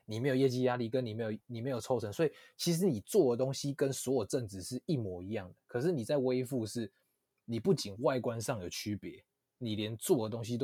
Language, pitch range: Chinese, 105-135 Hz